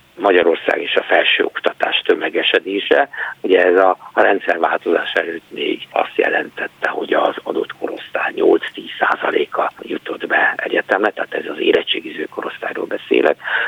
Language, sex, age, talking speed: Hungarian, male, 60-79, 125 wpm